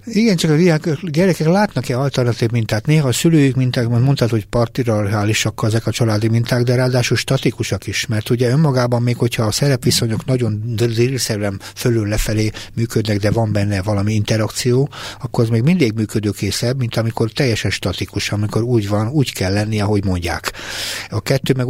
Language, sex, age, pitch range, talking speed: Hungarian, male, 60-79, 105-125 Hz, 165 wpm